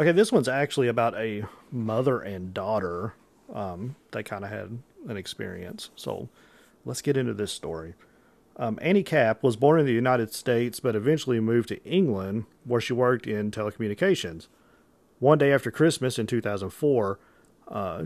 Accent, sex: American, male